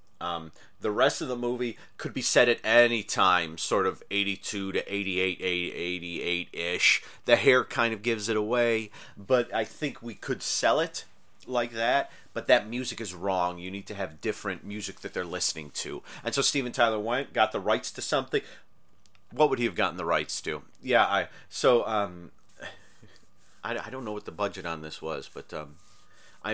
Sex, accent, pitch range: male, American, 90-120 Hz